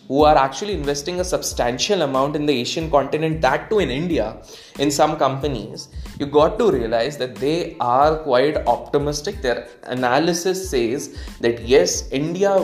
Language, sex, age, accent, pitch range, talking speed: English, male, 20-39, Indian, 130-170 Hz, 155 wpm